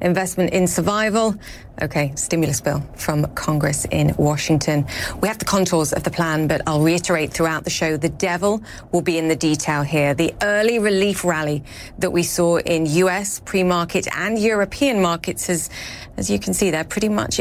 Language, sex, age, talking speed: English, female, 30-49, 180 wpm